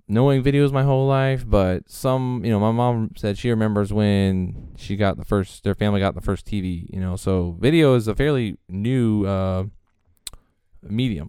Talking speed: 185 wpm